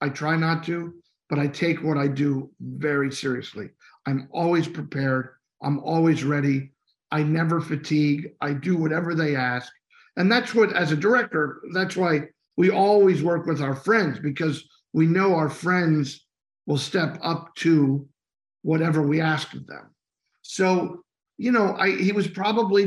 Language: English